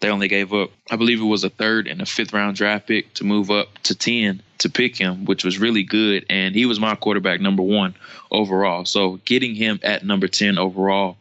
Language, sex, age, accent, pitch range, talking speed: English, male, 20-39, American, 95-105 Hz, 230 wpm